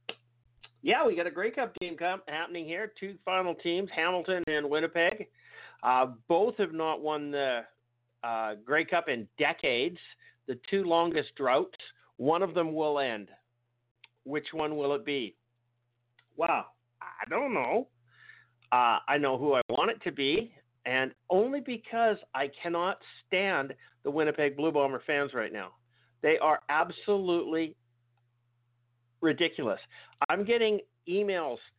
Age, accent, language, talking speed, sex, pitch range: 50-69, American, English, 140 wpm, male, 125-175 Hz